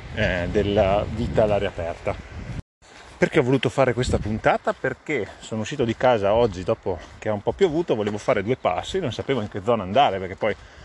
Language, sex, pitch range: Italian, male, 100-120 Hz